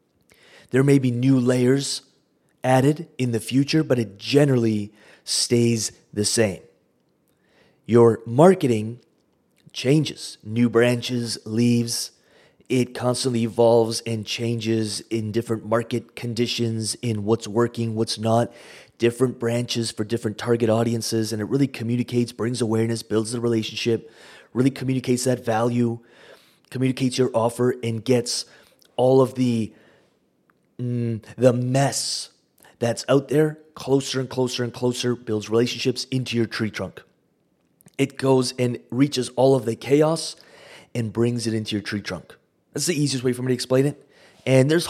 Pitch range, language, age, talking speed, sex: 115-130 Hz, English, 30-49, 140 wpm, male